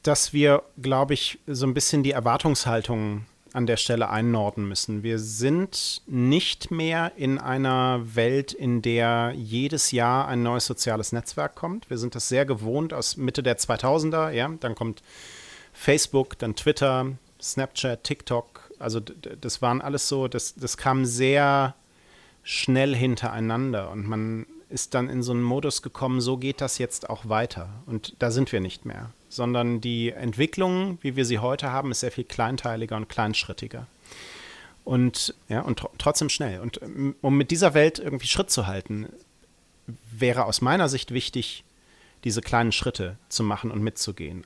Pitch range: 115-140 Hz